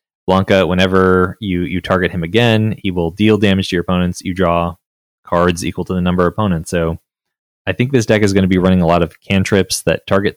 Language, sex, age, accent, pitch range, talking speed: English, male, 20-39, American, 85-100 Hz, 225 wpm